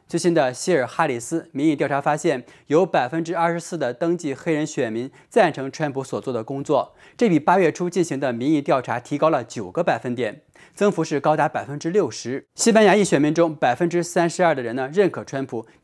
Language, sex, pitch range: Chinese, male, 130-170 Hz